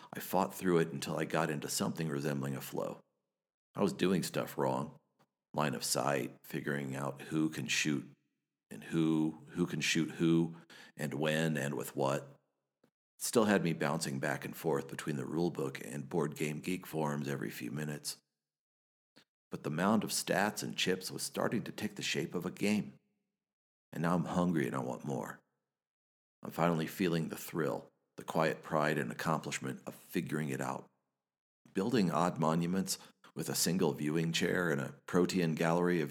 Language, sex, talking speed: English, male, 175 wpm